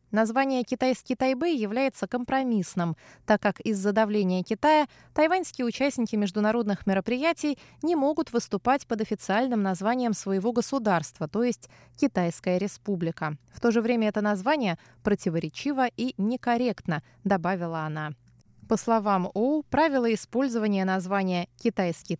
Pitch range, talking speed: 185-250 Hz, 120 wpm